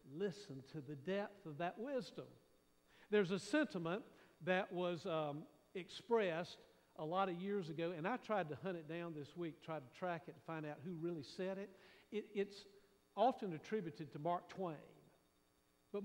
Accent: American